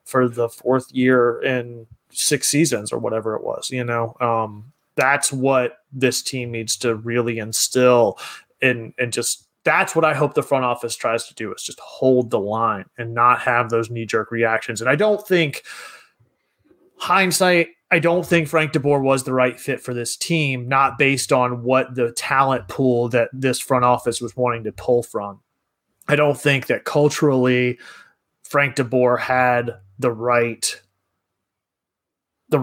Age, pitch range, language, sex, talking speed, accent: 30-49, 120-140 Hz, English, male, 165 wpm, American